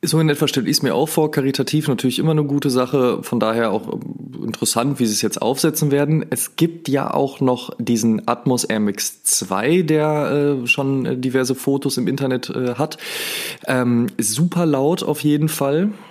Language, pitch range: German, 115-150 Hz